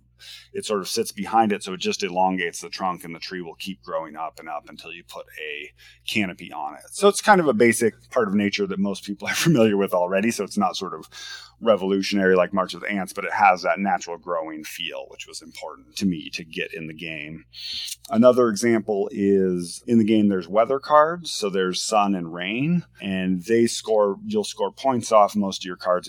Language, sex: English, male